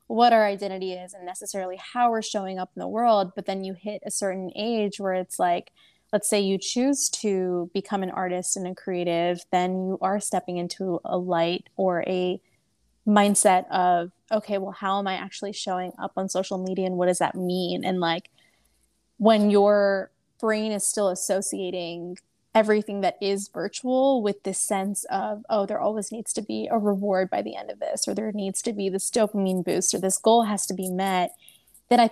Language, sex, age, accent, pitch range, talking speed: English, female, 20-39, American, 185-210 Hz, 200 wpm